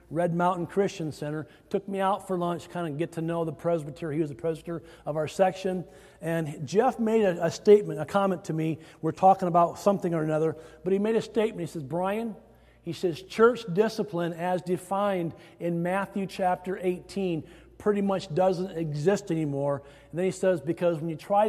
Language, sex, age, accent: English, male, 50-69, American